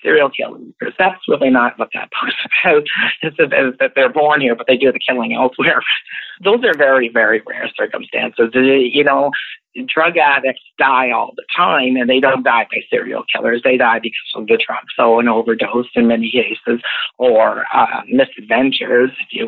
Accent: American